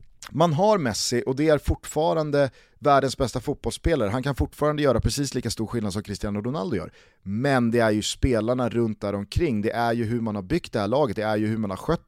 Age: 30-49